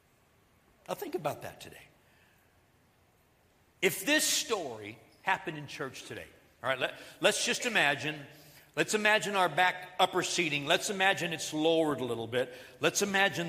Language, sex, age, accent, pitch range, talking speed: English, male, 60-79, American, 175-235 Hz, 140 wpm